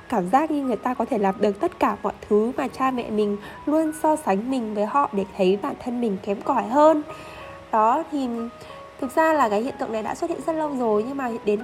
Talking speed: 255 wpm